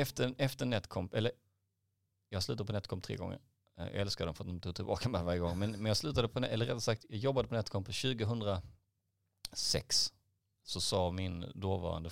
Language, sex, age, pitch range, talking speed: Swedish, male, 30-49, 95-115 Hz, 200 wpm